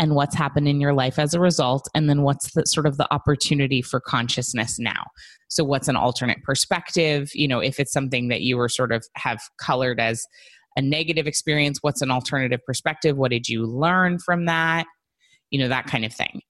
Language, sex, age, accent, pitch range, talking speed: English, female, 20-39, American, 140-175 Hz, 205 wpm